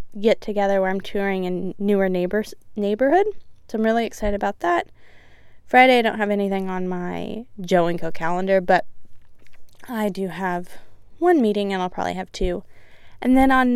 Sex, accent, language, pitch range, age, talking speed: female, American, English, 185-245 Hz, 20-39, 175 wpm